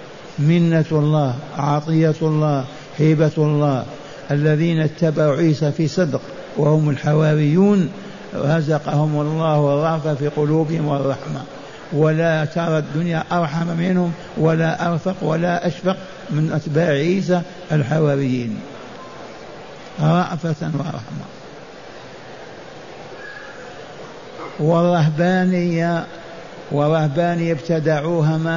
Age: 60-79